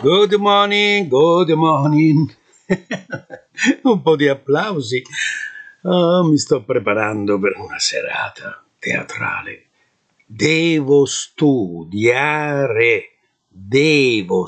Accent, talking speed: native, 80 wpm